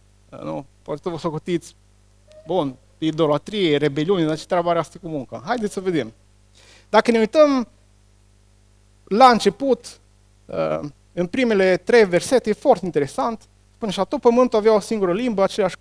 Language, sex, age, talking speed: Romanian, male, 30-49, 145 wpm